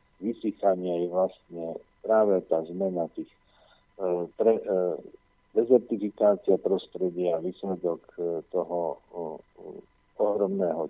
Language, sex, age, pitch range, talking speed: Slovak, male, 50-69, 85-110 Hz, 70 wpm